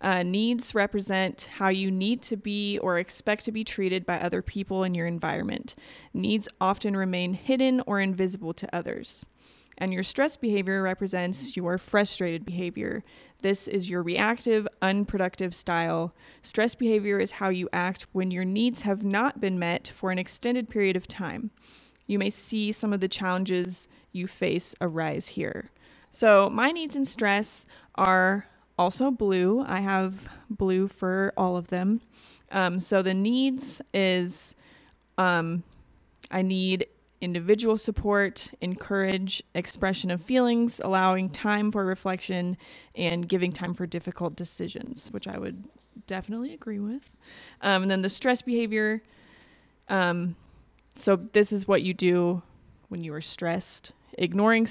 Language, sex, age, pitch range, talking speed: English, female, 30-49, 180-215 Hz, 145 wpm